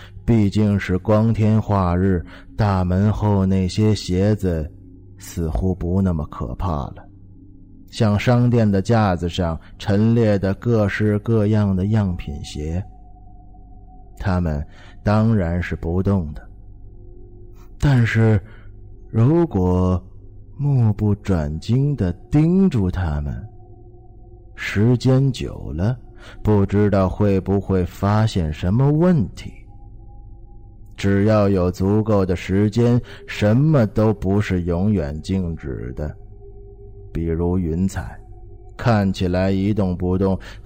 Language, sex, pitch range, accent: Chinese, male, 90-110 Hz, native